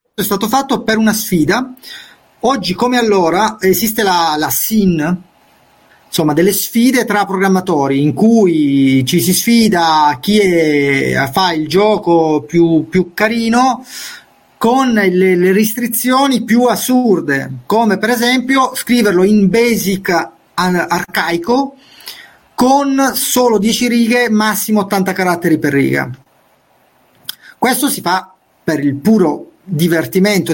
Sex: male